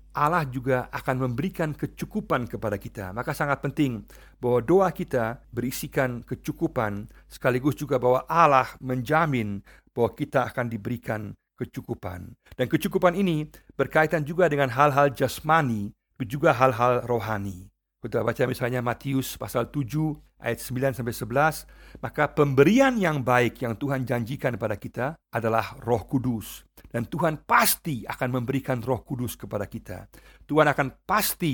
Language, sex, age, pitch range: Indonesian, male, 50-69, 115-145 Hz